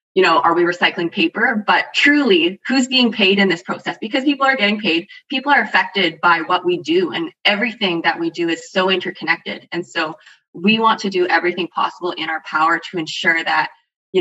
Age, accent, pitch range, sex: 20-39, American, 165-205 Hz, female